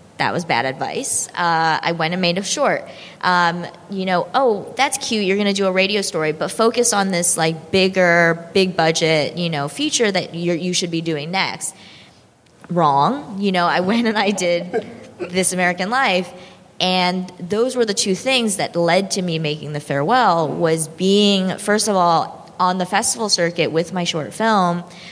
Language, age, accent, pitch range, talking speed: English, 20-39, American, 160-190 Hz, 185 wpm